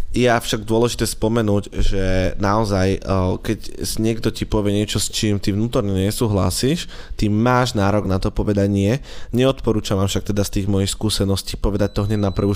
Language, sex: Slovak, male